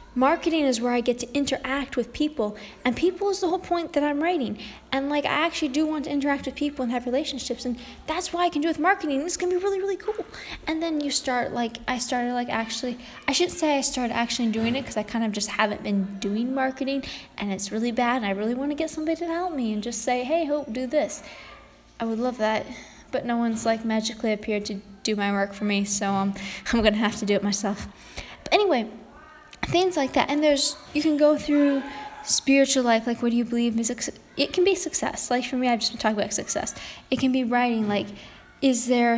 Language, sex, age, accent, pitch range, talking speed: English, female, 10-29, American, 225-290 Hz, 240 wpm